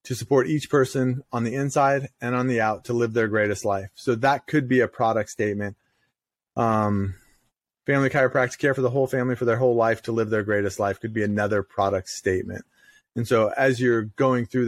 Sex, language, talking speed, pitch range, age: male, English, 210 wpm, 115-135 Hz, 30-49